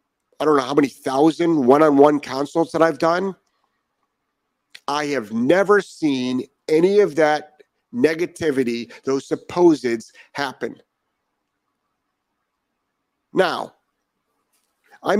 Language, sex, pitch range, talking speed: English, male, 120-155 Hz, 95 wpm